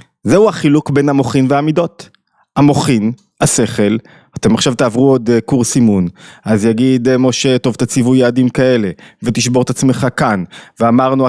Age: 30-49